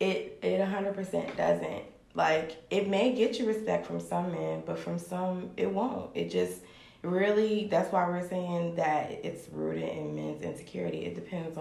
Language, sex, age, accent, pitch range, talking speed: English, female, 20-39, American, 140-190 Hz, 170 wpm